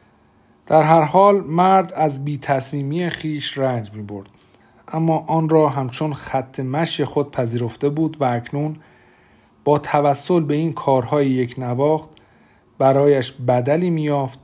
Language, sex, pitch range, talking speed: Persian, male, 125-155 Hz, 130 wpm